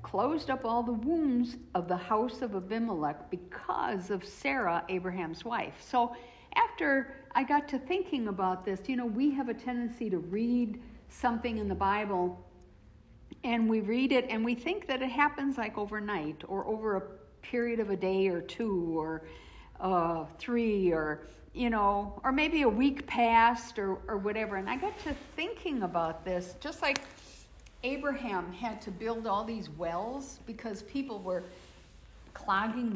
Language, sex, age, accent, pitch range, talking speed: English, female, 60-79, American, 185-245 Hz, 165 wpm